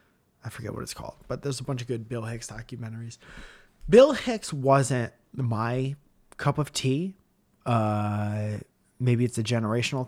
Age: 30-49